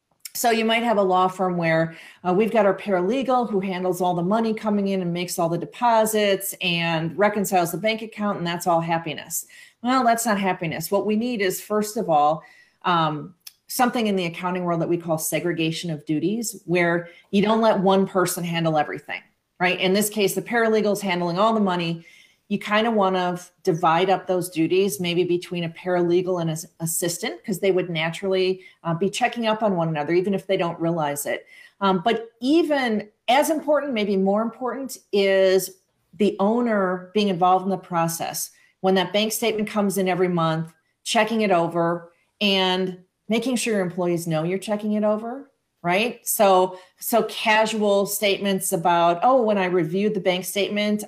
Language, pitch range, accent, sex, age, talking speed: English, 175-215 Hz, American, female, 40-59, 185 wpm